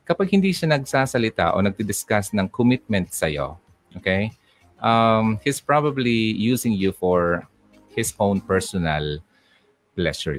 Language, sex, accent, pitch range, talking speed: Filipino, male, native, 90-130 Hz, 120 wpm